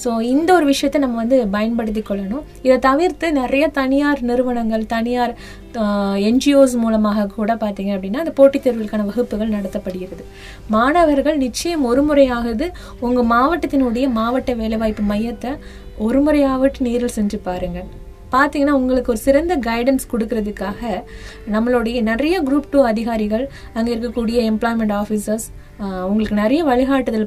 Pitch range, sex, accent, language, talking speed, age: 215-275 Hz, female, native, Tamil, 120 wpm, 20-39